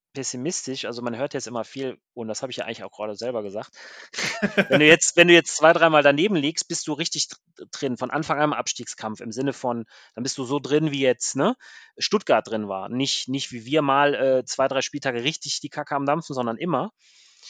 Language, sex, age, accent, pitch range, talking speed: German, male, 30-49, German, 125-155 Hz, 225 wpm